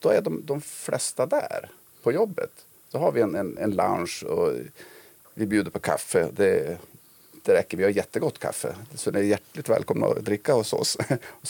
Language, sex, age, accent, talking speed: Swedish, male, 40-59, Norwegian, 195 wpm